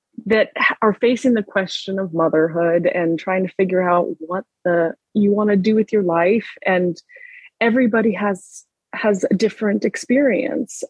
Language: English